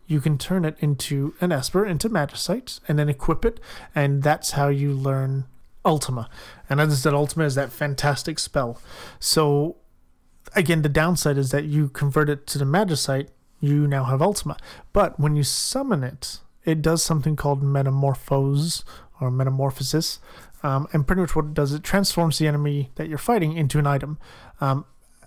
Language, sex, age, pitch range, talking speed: English, male, 30-49, 140-165 Hz, 175 wpm